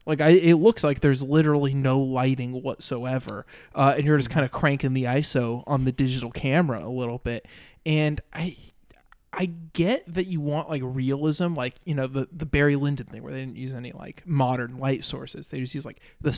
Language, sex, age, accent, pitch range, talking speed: English, male, 20-39, American, 130-170 Hz, 210 wpm